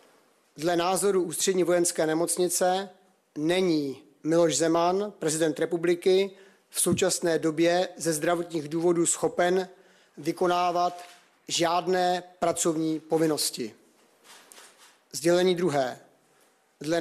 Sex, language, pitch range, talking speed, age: male, Czech, 165-185 Hz, 85 wpm, 30-49